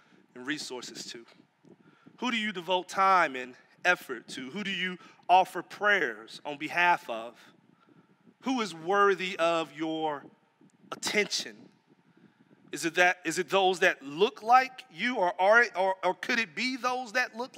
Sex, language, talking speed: male, English, 155 wpm